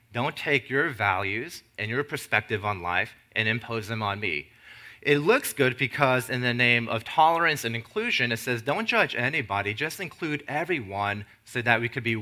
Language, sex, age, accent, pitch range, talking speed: English, male, 30-49, American, 110-125 Hz, 185 wpm